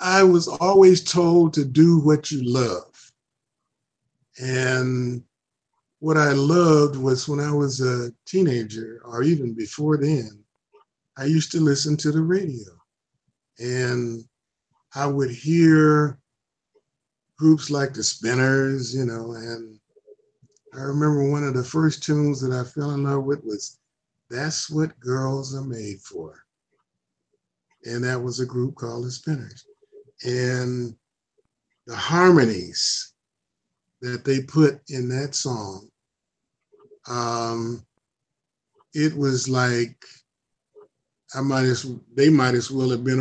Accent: American